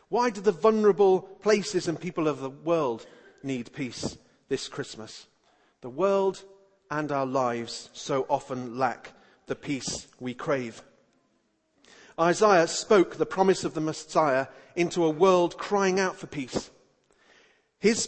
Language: English